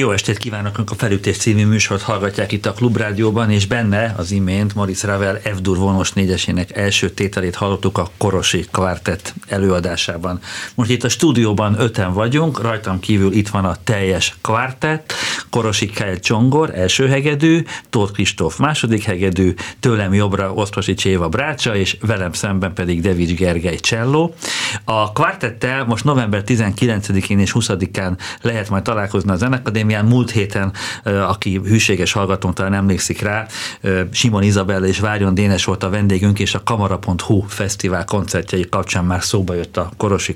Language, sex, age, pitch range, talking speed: Hungarian, male, 50-69, 95-115 Hz, 145 wpm